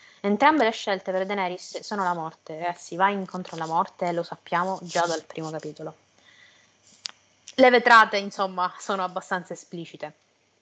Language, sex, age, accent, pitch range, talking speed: Italian, female, 20-39, native, 175-205 Hz, 145 wpm